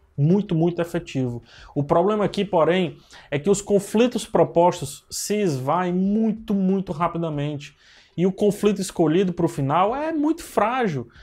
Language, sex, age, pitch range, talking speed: Portuguese, male, 20-39, 150-195 Hz, 145 wpm